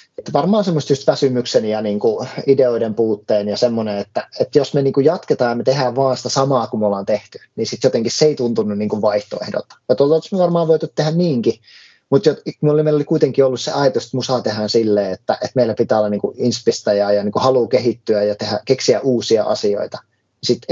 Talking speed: 220 wpm